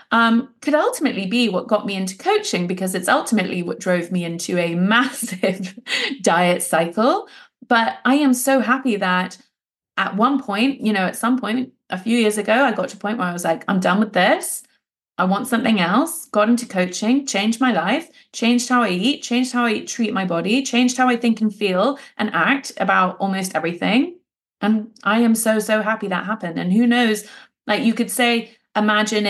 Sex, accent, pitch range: female, British, 190-235 Hz